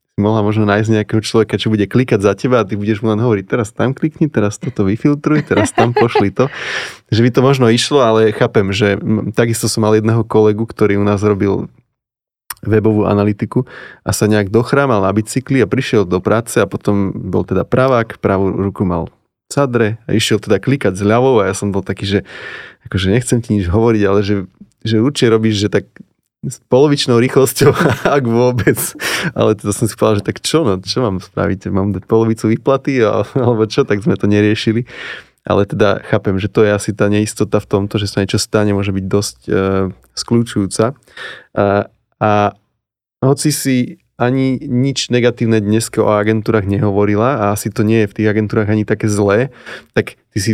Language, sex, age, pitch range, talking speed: Slovak, male, 20-39, 100-115 Hz, 190 wpm